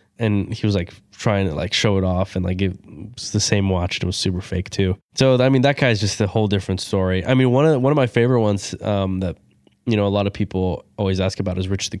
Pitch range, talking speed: 95-110 Hz, 280 wpm